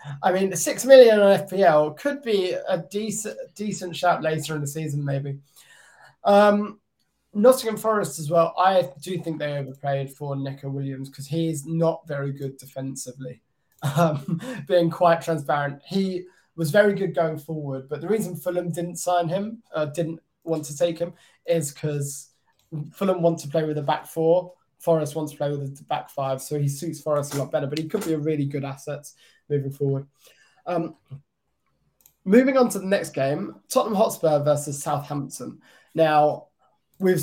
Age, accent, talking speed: 20-39, British, 175 wpm